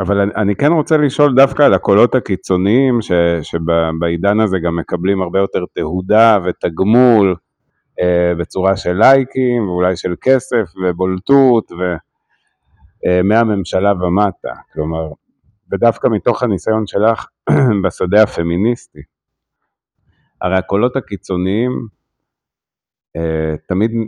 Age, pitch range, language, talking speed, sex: 50-69, 90-120 Hz, Hebrew, 105 wpm, male